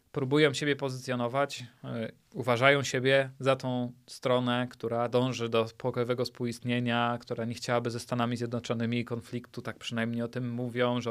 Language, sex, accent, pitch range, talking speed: Polish, male, native, 120-145 Hz, 140 wpm